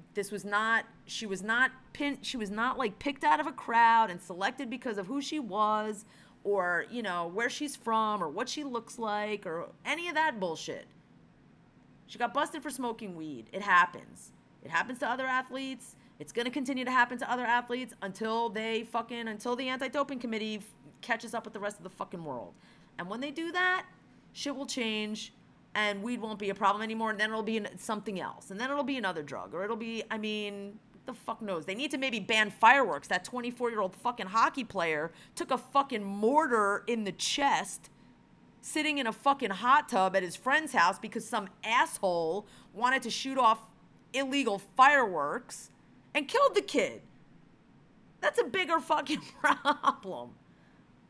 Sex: female